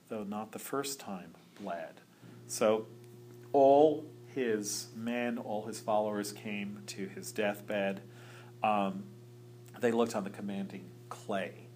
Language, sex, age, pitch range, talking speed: English, male, 40-59, 105-150 Hz, 120 wpm